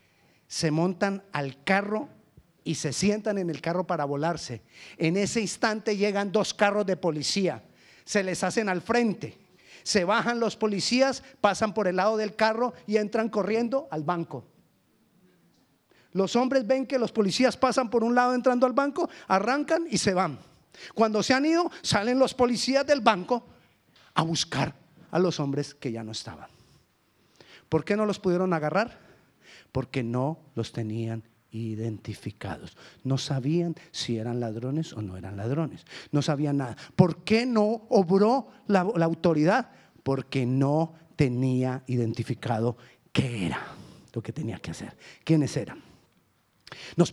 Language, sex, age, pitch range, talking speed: Spanish, male, 40-59, 145-225 Hz, 150 wpm